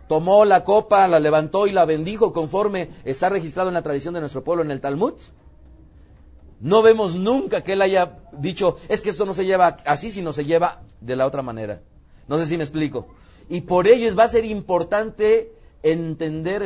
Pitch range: 115-175 Hz